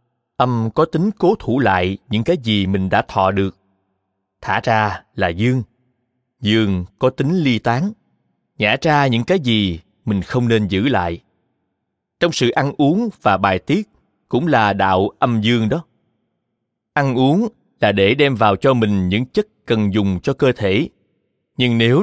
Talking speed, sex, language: 170 wpm, male, Vietnamese